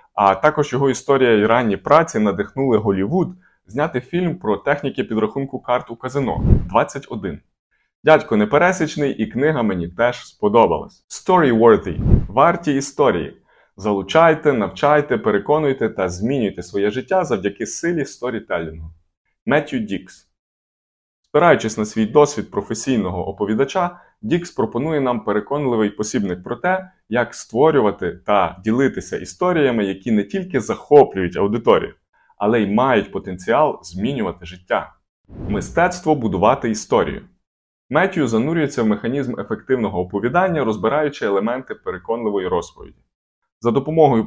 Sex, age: male, 20-39